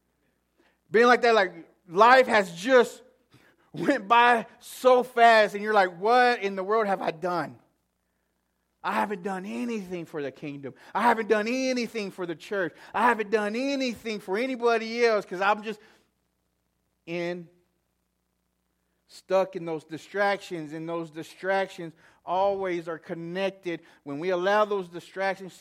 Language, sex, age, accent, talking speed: English, male, 30-49, American, 145 wpm